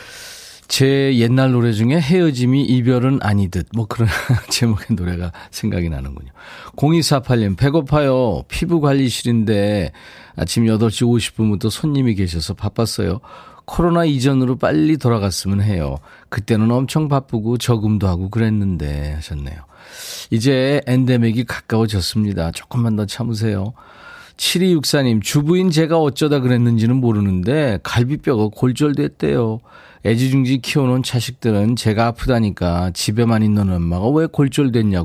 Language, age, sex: Korean, 40-59, male